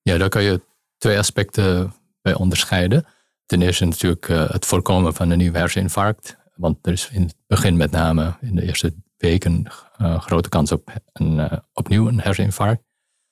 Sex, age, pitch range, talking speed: male, 50-69, 85-100 Hz, 175 wpm